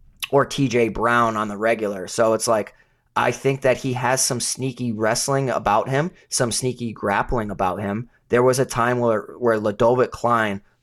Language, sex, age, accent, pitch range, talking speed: English, male, 30-49, American, 110-135 Hz, 175 wpm